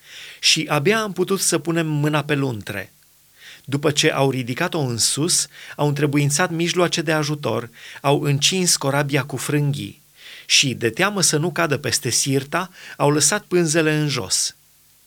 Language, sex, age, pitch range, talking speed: Romanian, male, 30-49, 135-170 Hz, 150 wpm